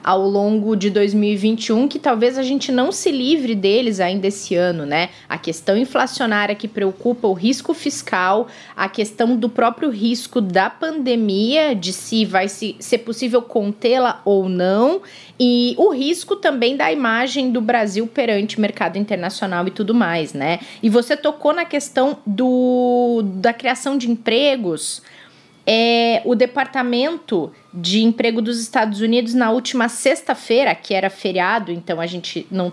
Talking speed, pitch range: 145 wpm, 210-265 Hz